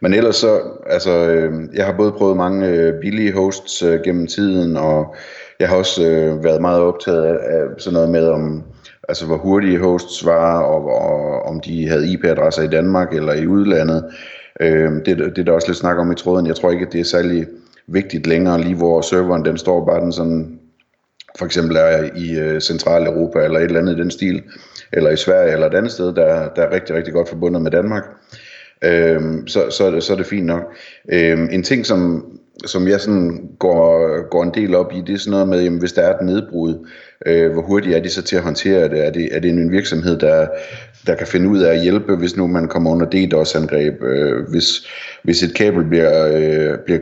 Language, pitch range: Danish, 80-90 Hz